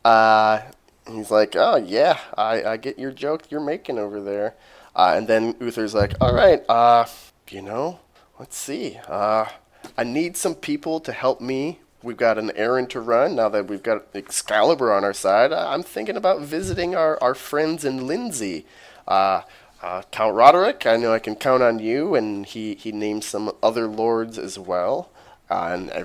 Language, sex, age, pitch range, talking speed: English, male, 20-39, 105-135 Hz, 180 wpm